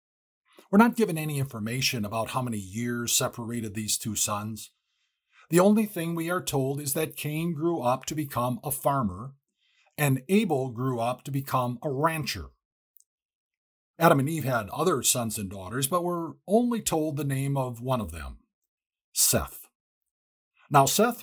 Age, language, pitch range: 50-69, English, 115-160 Hz